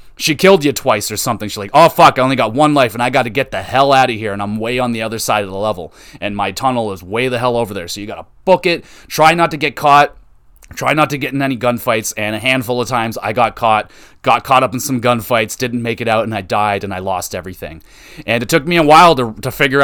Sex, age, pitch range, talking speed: male, 30-49, 105-140 Hz, 290 wpm